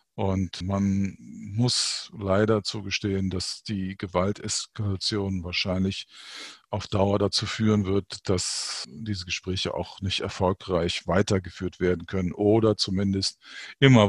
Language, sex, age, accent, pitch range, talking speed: German, male, 50-69, German, 95-115 Hz, 110 wpm